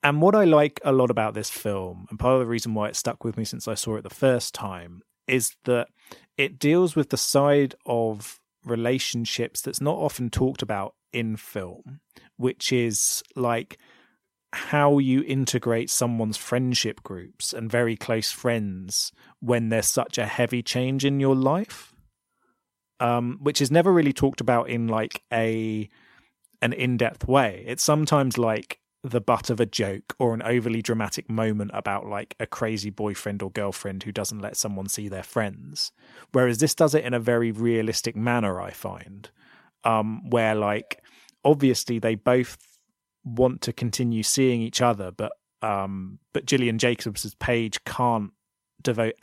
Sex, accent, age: male, British, 30-49